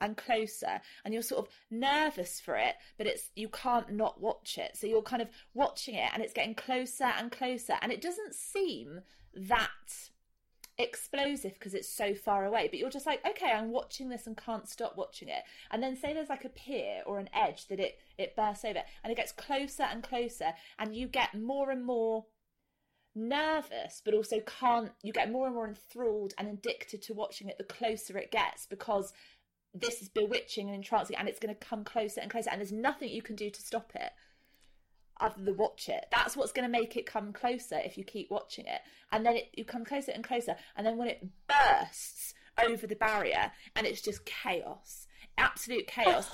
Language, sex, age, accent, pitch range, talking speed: English, female, 30-49, British, 215-275 Hz, 205 wpm